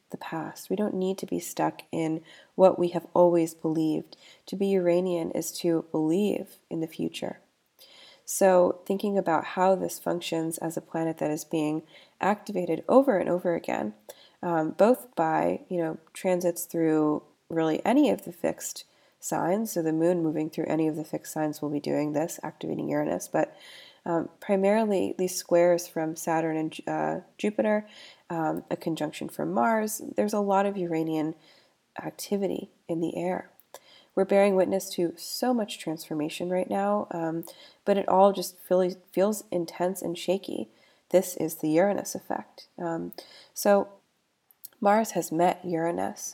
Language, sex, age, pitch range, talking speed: English, female, 20-39, 160-195 Hz, 160 wpm